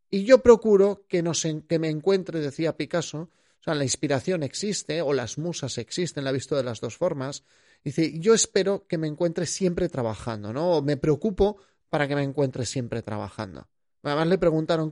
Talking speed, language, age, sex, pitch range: 190 wpm, Spanish, 30-49, male, 135-200 Hz